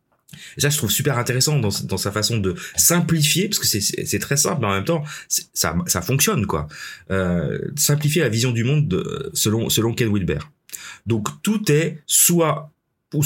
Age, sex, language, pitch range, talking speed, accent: 30-49, male, French, 100-155 Hz, 195 wpm, French